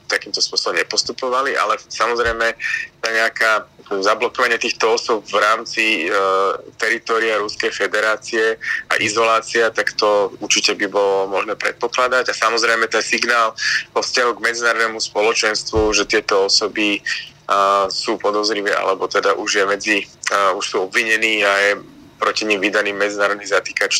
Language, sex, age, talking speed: Slovak, male, 20-39, 140 wpm